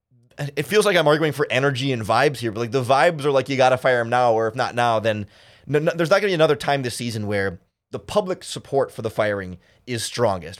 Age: 20-39